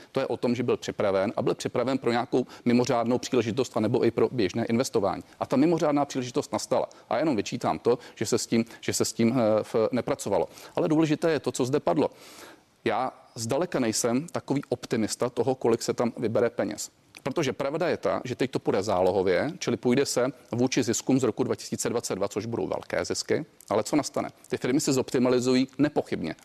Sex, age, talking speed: male, 40-59, 190 wpm